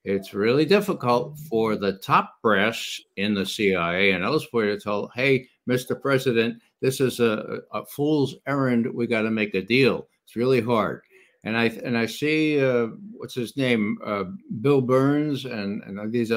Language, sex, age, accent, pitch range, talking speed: English, male, 60-79, American, 115-150 Hz, 170 wpm